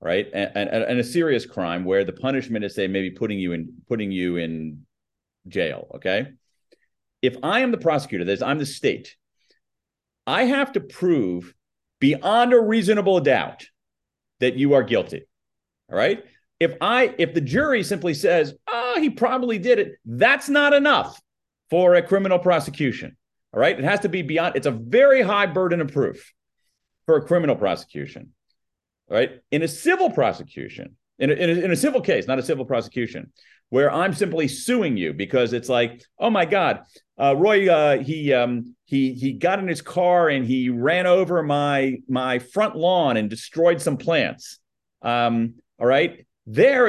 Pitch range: 130-200 Hz